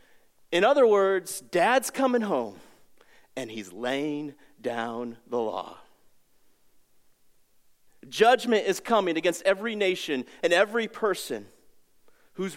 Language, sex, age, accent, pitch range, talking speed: English, male, 40-59, American, 200-265 Hz, 105 wpm